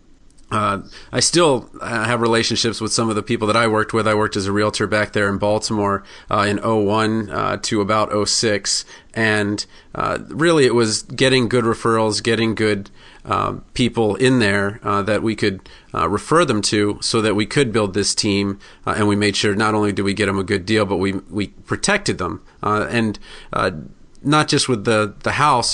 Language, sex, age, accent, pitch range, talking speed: English, male, 40-59, American, 105-120 Hz, 210 wpm